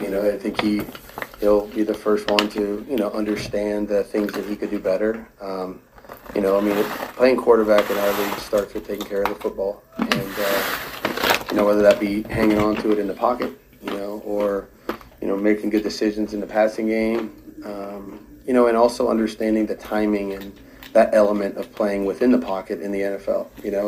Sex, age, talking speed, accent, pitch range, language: male, 30-49, 210 wpm, American, 100-105 Hz, English